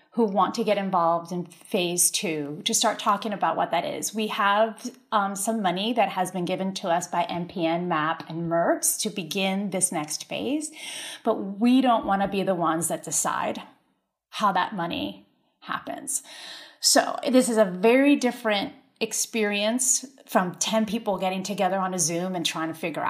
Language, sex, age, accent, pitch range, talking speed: English, female, 30-49, American, 175-235 Hz, 180 wpm